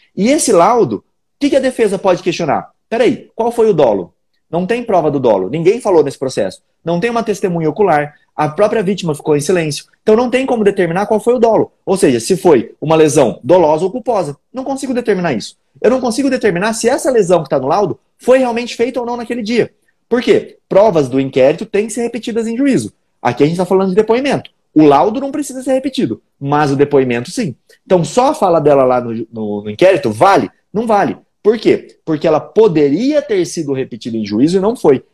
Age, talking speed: 30-49, 220 wpm